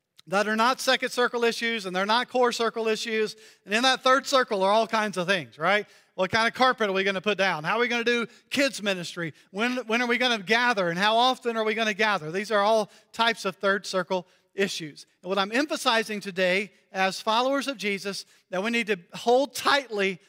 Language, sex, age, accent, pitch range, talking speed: English, male, 40-59, American, 190-230 Hz, 235 wpm